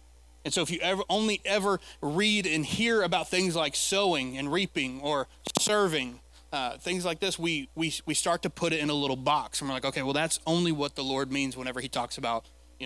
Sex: male